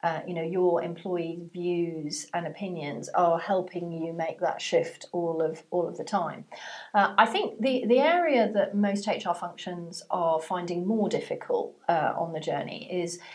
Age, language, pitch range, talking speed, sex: 40-59, English, 170-205 Hz, 175 wpm, female